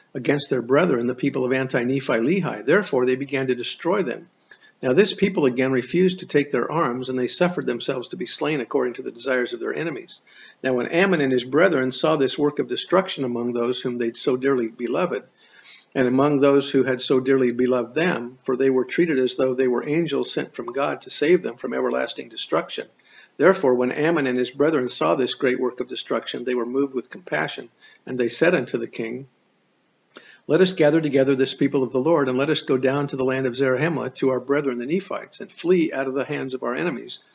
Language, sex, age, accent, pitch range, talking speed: English, male, 50-69, American, 125-145 Hz, 220 wpm